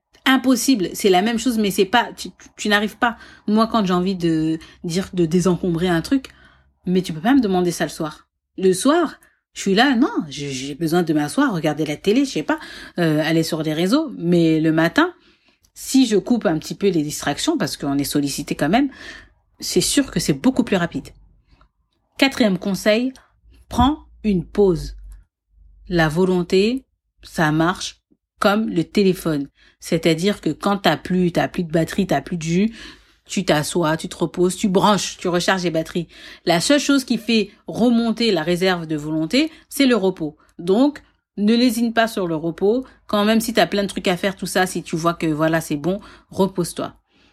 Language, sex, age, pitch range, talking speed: French, female, 40-59, 165-235 Hz, 195 wpm